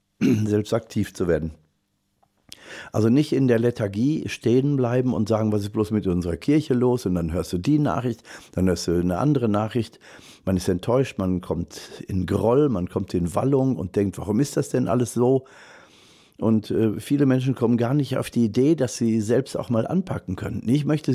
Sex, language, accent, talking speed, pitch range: male, German, German, 195 wpm, 105-140 Hz